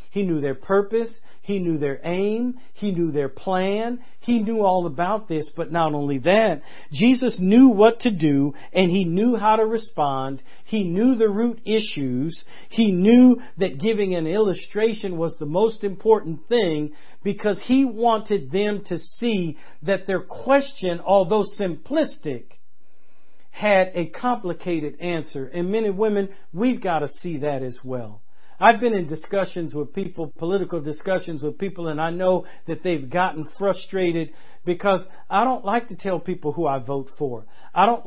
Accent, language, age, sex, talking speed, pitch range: American, English, 50-69, male, 165 wpm, 160-215 Hz